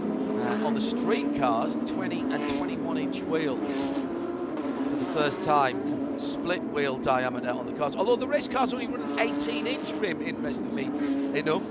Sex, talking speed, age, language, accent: male, 145 wpm, 40-59, English, British